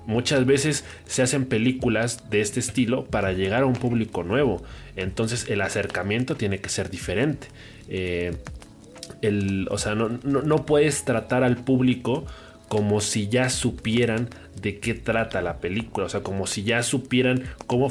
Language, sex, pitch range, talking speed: Spanish, male, 100-130 Hz, 160 wpm